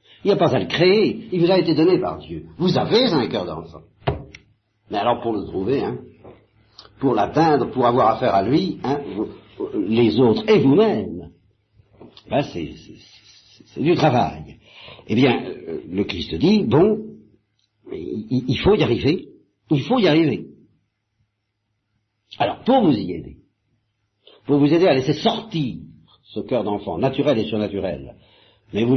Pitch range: 105-155 Hz